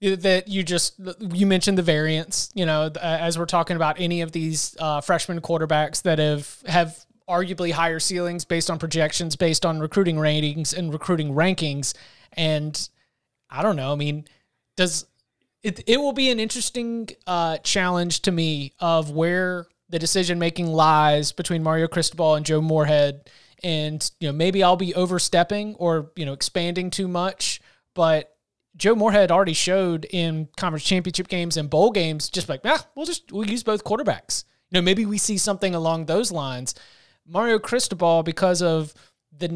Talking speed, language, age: 170 wpm, English, 30-49